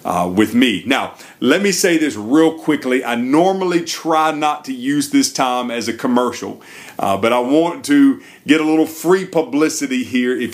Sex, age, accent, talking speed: male, 40-59, American, 190 wpm